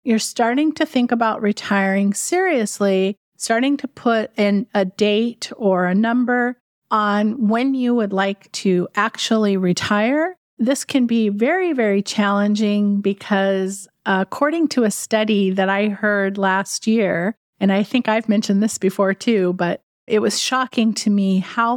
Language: English